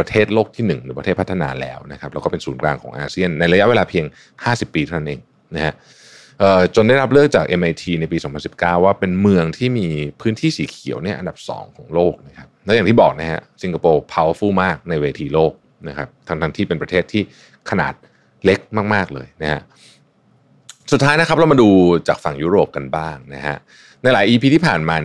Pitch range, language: 80-105 Hz, Thai